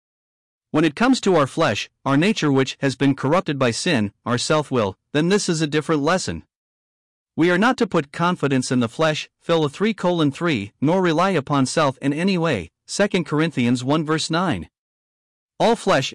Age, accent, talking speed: 40-59, American, 185 wpm